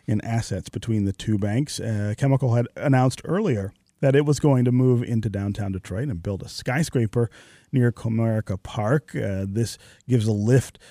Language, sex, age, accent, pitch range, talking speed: English, male, 30-49, American, 100-125 Hz, 175 wpm